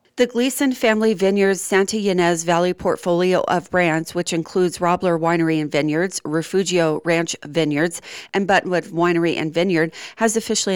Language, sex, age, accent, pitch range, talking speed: English, female, 40-59, American, 160-185 Hz, 145 wpm